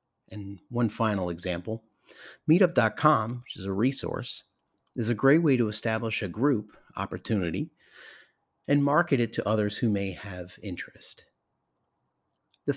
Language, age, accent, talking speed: English, 30-49, American, 130 wpm